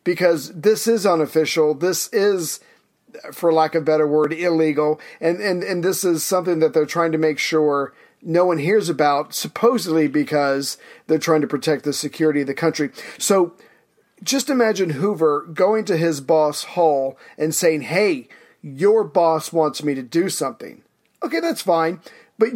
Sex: male